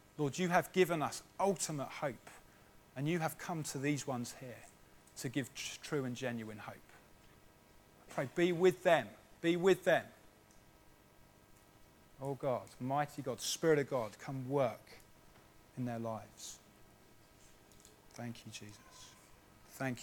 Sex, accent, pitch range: male, British, 115-155 Hz